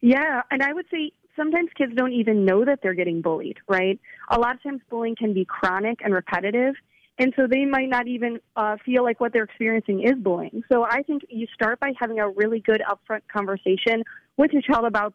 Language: English